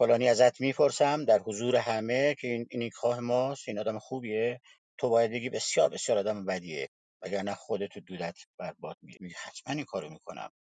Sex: male